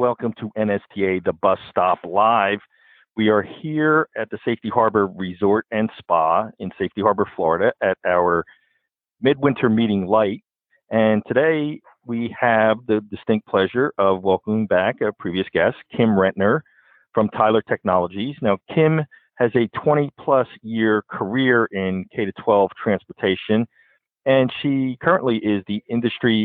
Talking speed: 140 wpm